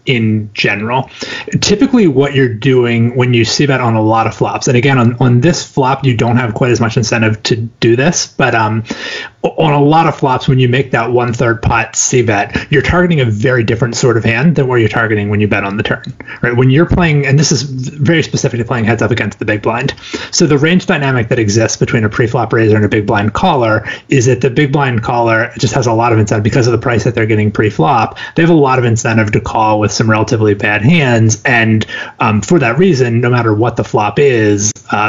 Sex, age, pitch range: male, 30-49, 110-135 Hz